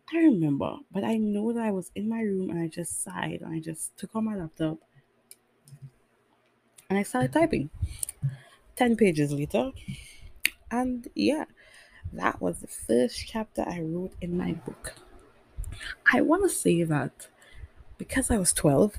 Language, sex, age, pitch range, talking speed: English, female, 20-39, 150-200 Hz, 160 wpm